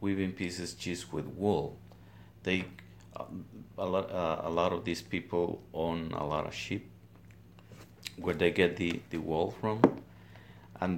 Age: 50-69